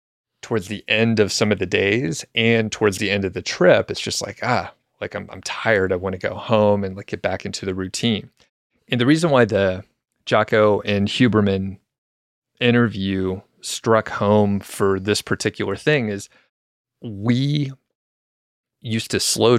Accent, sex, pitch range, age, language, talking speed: American, male, 95-115 Hz, 30-49, English, 165 wpm